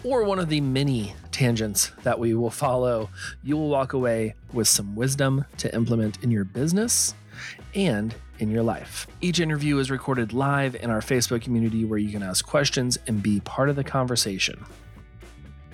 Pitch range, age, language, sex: 110-165 Hz, 30-49, English, male